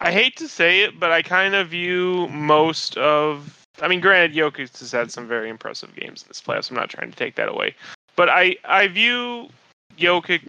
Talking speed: 205 wpm